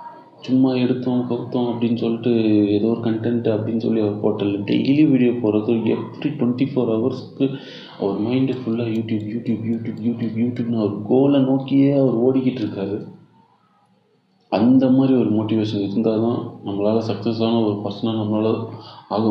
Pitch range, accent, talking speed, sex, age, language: 105-125 Hz, native, 145 wpm, male, 30-49, Tamil